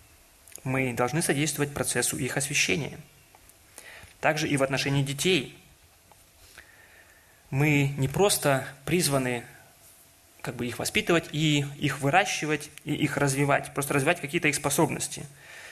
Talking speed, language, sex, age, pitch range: 105 wpm, Russian, male, 20-39, 135-160 Hz